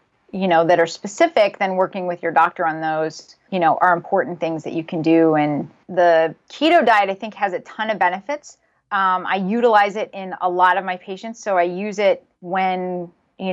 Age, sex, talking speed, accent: 30-49, female, 215 wpm, American